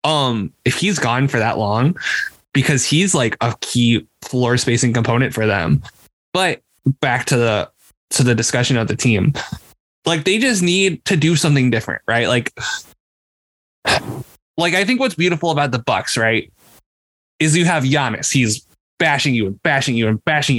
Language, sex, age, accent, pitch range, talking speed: English, male, 20-39, American, 120-180 Hz, 170 wpm